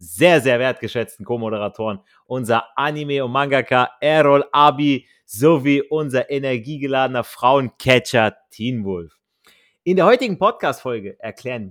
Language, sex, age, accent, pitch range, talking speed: German, male, 30-49, German, 110-150 Hz, 110 wpm